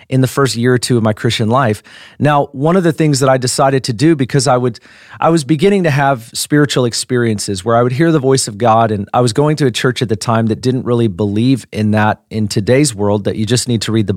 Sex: male